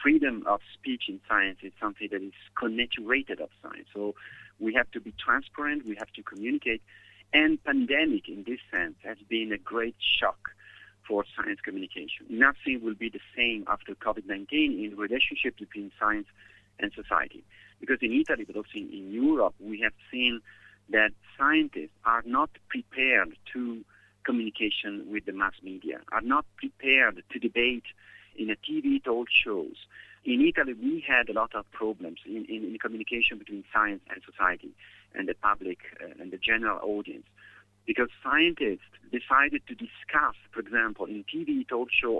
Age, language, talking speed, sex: 50-69, Hebrew, 165 wpm, male